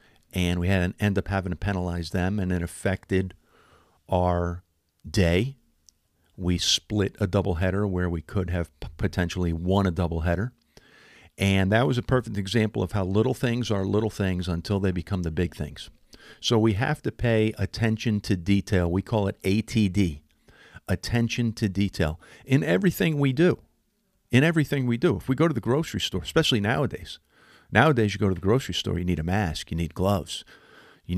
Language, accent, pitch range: English, American, 85-105 Hz